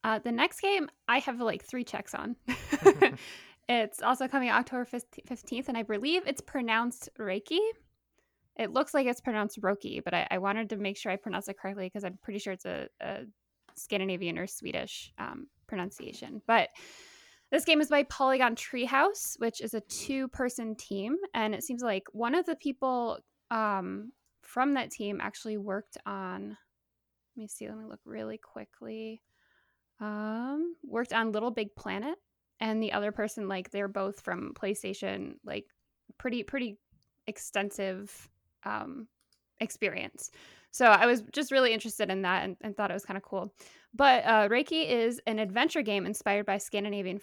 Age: 10-29